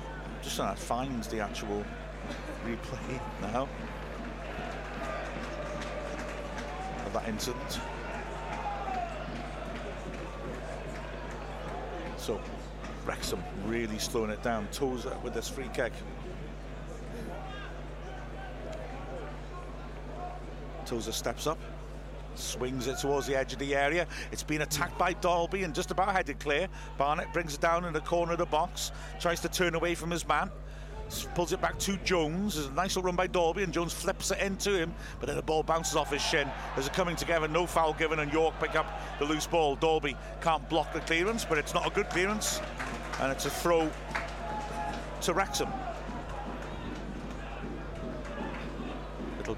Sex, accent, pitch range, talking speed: male, British, 145-175 Hz, 140 wpm